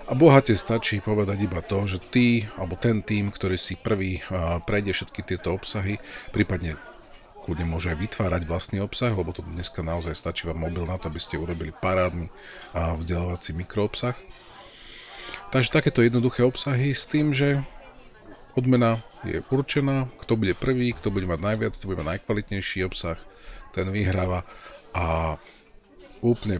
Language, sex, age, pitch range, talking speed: Slovak, male, 40-59, 85-105 Hz, 150 wpm